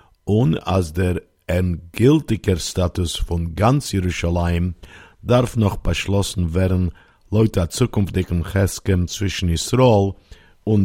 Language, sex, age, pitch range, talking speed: Hebrew, male, 50-69, 85-105 Hz, 100 wpm